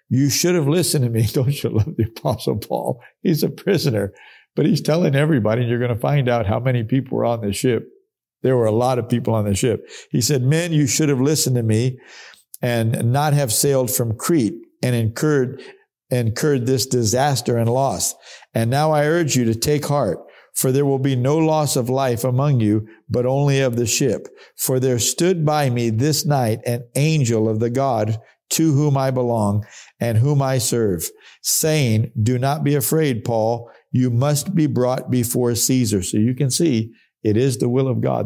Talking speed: 200 wpm